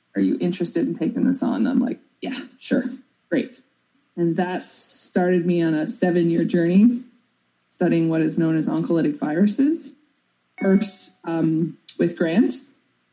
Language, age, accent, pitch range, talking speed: English, 20-39, American, 170-225 Hz, 145 wpm